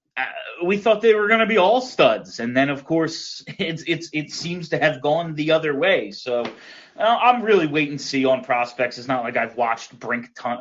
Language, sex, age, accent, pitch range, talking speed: English, male, 30-49, American, 120-170 Hz, 225 wpm